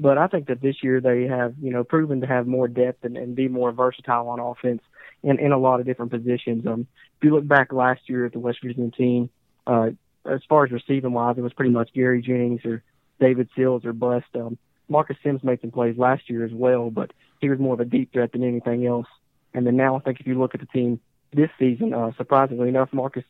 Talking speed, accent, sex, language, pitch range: 245 wpm, American, male, English, 120-135 Hz